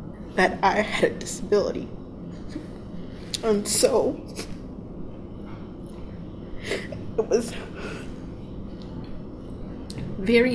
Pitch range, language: 200-240 Hz, English